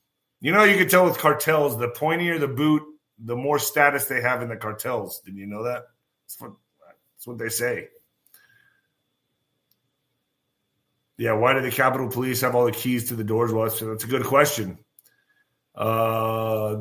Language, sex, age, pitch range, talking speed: English, male, 30-49, 115-145 Hz, 175 wpm